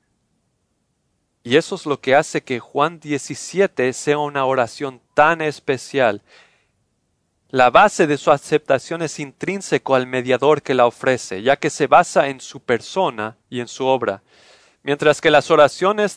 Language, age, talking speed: English, 40-59, 150 wpm